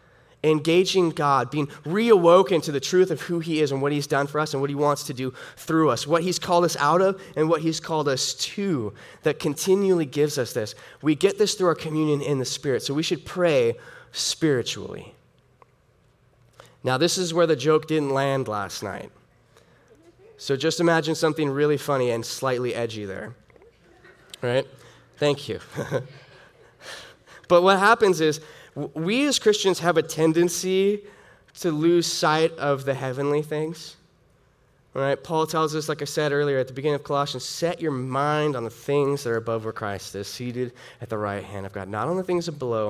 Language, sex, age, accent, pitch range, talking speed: English, male, 10-29, American, 125-160 Hz, 185 wpm